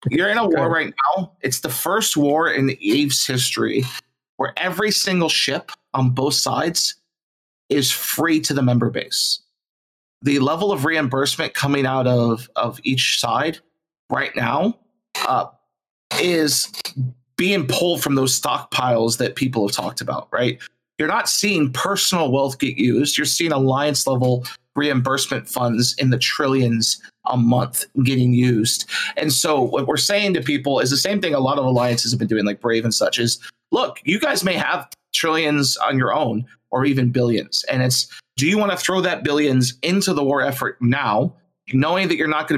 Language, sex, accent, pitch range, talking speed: English, male, American, 125-155 Hz, 175 wpm